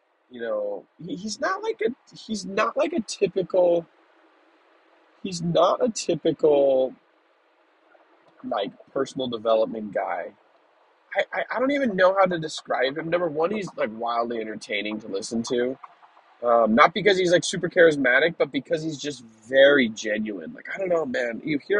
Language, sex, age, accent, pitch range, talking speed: English, male, 20-39, American, 115-175 Hz, 155 wpm